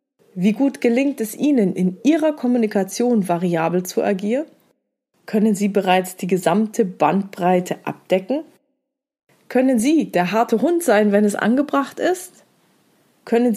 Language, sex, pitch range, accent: German, female, 185-245 Hz, German